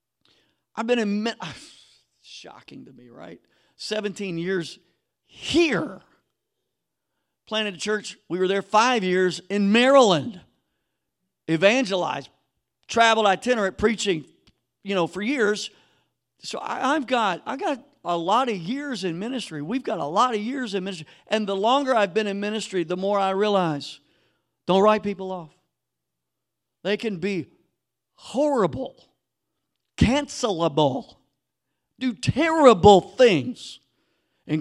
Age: 50-69